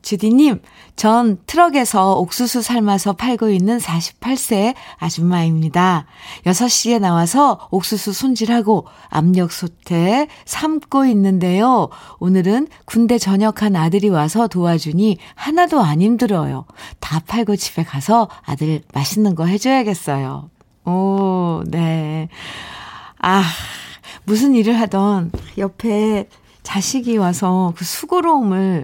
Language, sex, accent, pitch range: Korean, female, native, 170-235 Hz